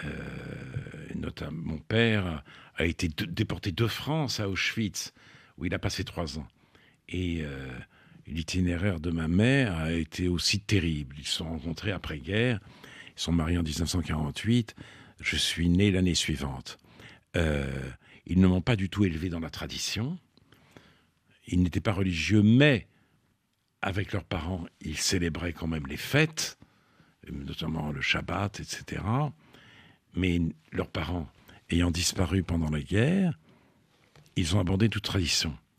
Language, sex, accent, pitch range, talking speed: French, male, French, 80-115 Hz, 140 wpm